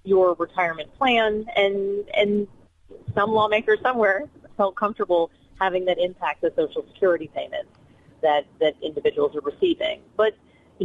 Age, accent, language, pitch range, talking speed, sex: 30-49, American, English, 170-230 Hz, 135 wpm, female